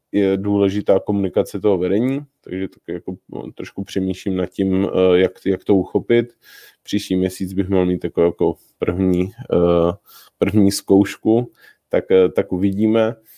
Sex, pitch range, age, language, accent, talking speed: male, 95-110 Hz, 20-39, Czech, native, 135 wpm